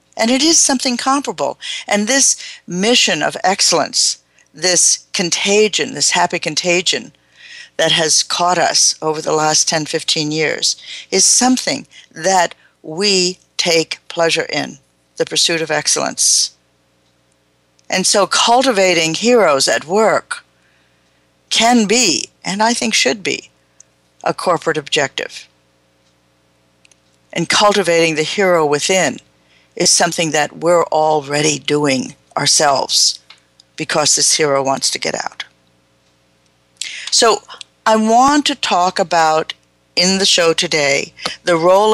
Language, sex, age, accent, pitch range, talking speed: English, female, 50-69, American, 145-215 Hz, 120 wpm